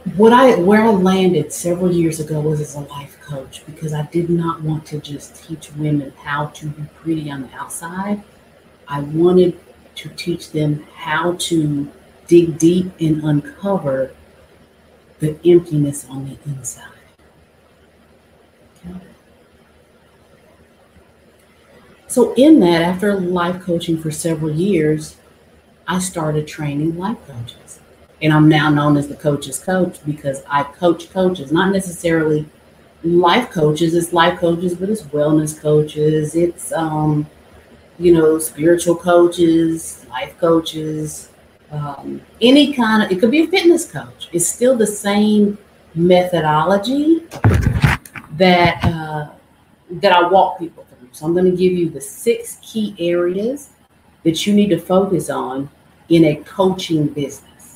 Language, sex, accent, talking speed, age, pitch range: English, female, American, 135 wpm, 40-59, 145-180 Hz